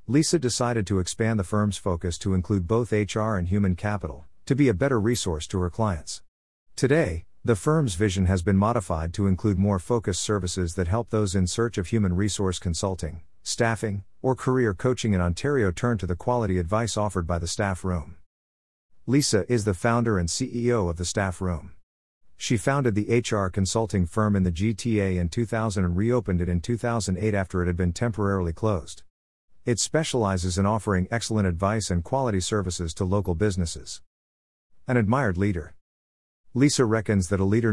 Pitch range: 90-115 Hz